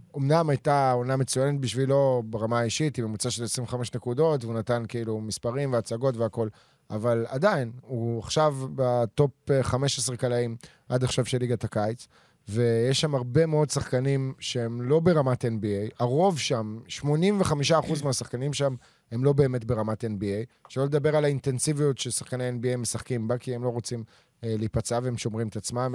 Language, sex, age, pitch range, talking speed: Hebrew, male, 20-39, 115-135 Hz, 155 wpm